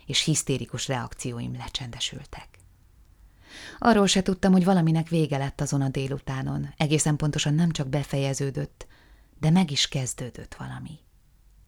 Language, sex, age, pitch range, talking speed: Hungarian, female, 30-49, 130-160 Hz, 125 wpm